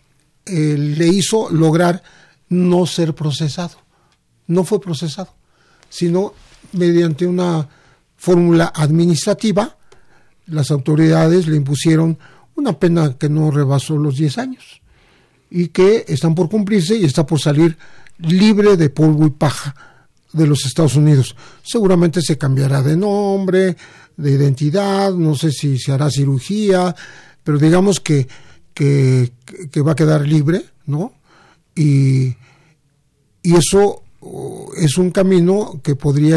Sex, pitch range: male, 145-180 Hz